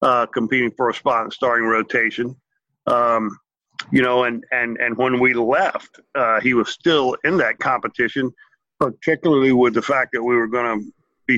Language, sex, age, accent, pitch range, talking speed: English, male, 50-69, American, 115-140 Hz, 180 wpm